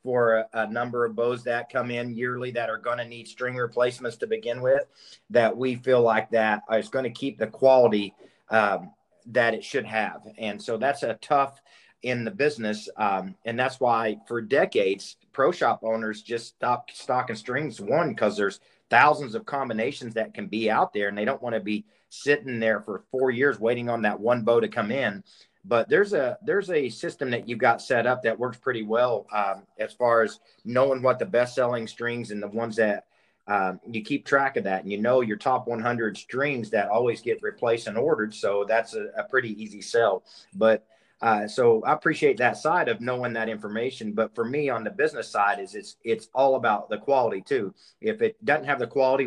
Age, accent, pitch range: 40-59, American, 110-130 Hz